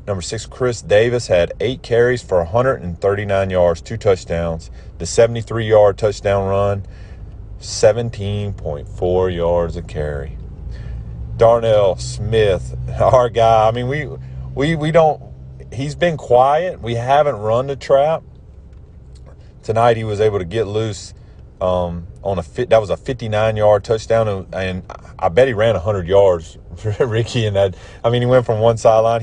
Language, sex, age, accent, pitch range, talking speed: English, male, 40-59, American, 85-110 Hz, 150 wpm